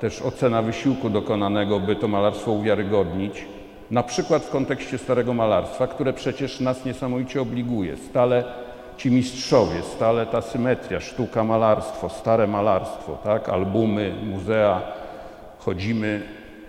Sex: male